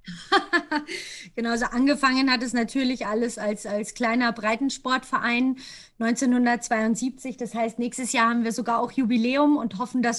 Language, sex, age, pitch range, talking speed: German, female, 30-49, 230-270 Hz, 140 wpm